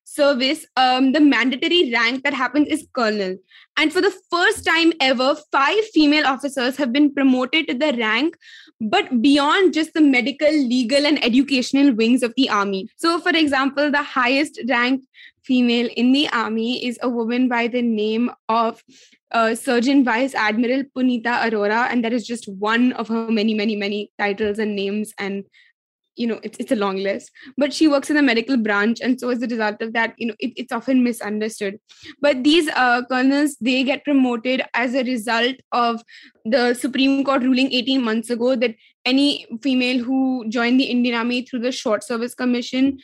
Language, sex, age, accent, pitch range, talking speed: English, female, 20-39, Indian, 235-280 Hz, 185 wpm